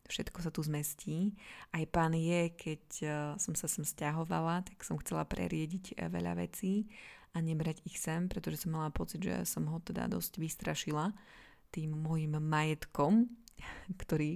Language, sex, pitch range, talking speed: Slovak, female, 155-185 Hz, 150 wpm